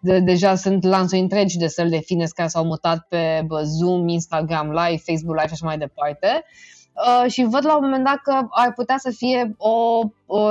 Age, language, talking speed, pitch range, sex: 20-39, Romanian, 210 wpm, 190-270 Hz, female